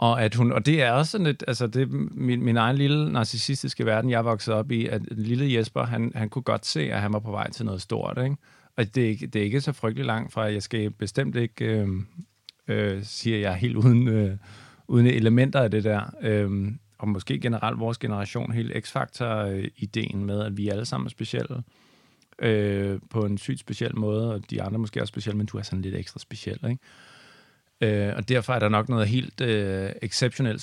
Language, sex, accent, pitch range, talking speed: Danish, male, native, 105-125 Hz, 215 wpm